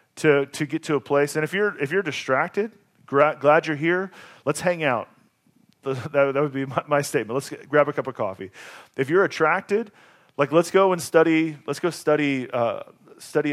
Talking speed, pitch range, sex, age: 205 wpm, 130-160 Hz, male, 40-59